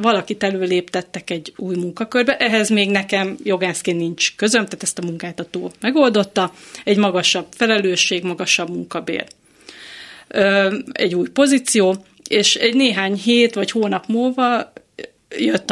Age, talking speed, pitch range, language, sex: 30-49, 120 wpm, 180-225 Hz, Hungarian, female